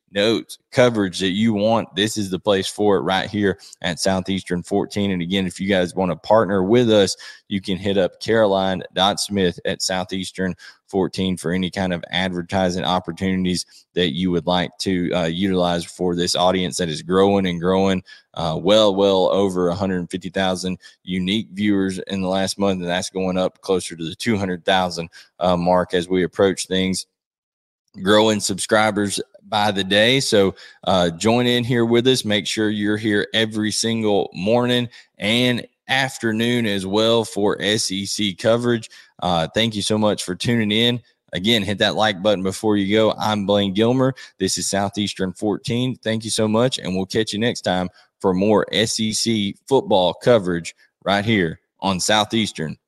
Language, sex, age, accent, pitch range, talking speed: English, male, 20-39, American, 90-110 Hz, 170 wpm